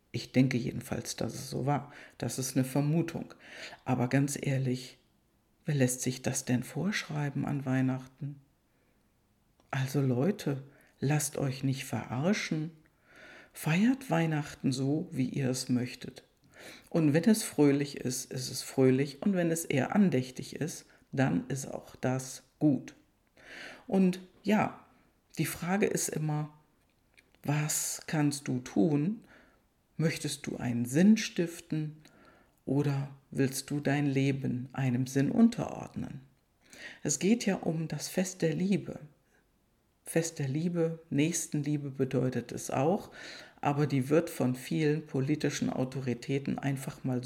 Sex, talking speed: female, 130 wpm